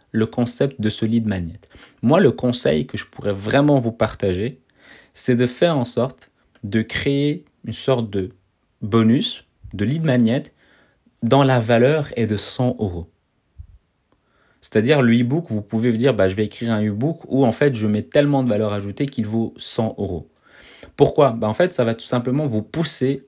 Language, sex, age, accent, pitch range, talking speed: French, male, 30-49, French, 105-130 Hz, 180 wpm